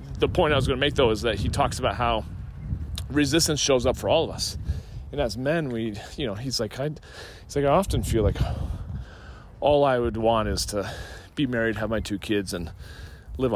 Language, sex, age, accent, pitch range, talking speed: English, male, 30-49, American, 95-125 Hz, 220 wpm